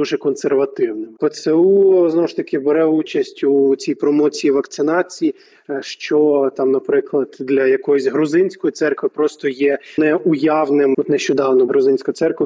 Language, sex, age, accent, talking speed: Ukrainian, male, 20-39, native, 125 wpm